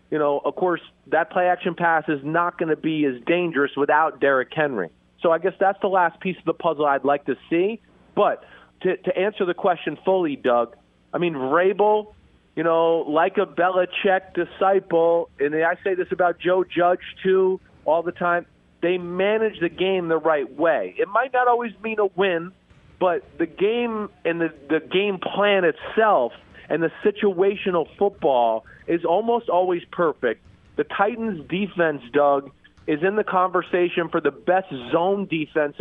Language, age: English, 40-59